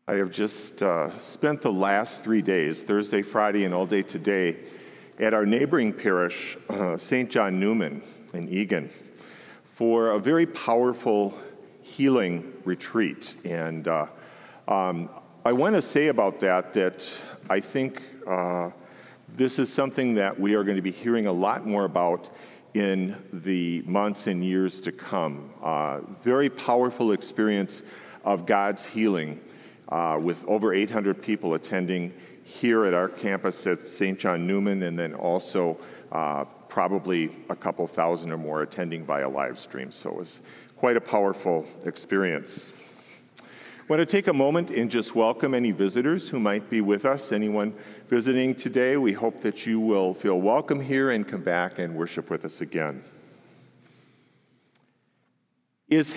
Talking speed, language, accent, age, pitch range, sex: 150 wpm, English, American, 50-69, 90-125 Hz, male